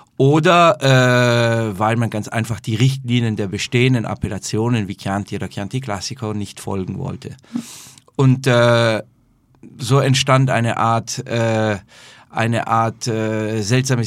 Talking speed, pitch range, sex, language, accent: 130 wpm, 110-125 Hz, male, German, German